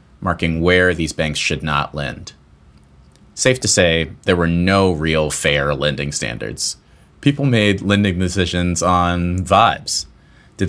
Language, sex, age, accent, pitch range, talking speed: English, male, 30-49, American, 80-110 Hz, 135 wpm